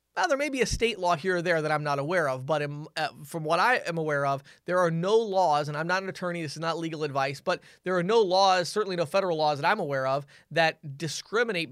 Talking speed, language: 260 wpm, English